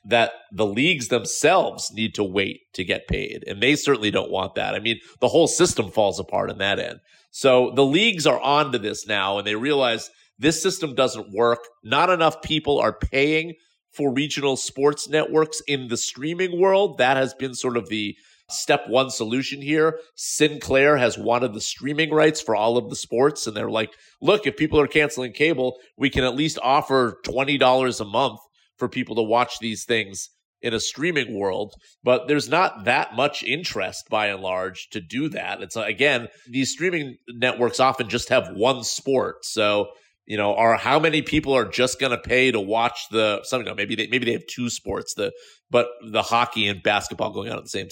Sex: male